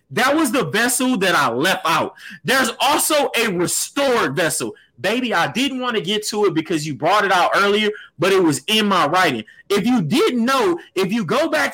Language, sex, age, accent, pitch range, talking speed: English, male, 30-49, American, 200-275 Hz, 210 wpm